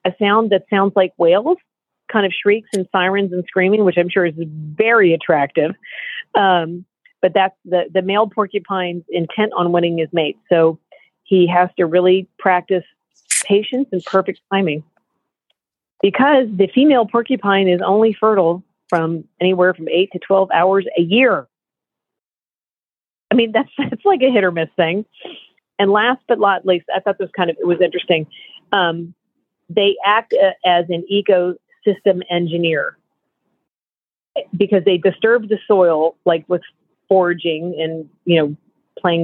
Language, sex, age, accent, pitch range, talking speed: English, female, 40-59, American, 170-205 Hz, 155 wpm